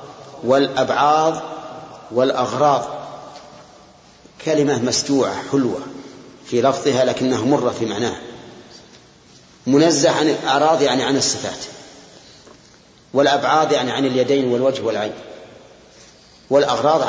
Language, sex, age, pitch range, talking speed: Arabic, male, 40-59, 130-155 Hz, 85 wpm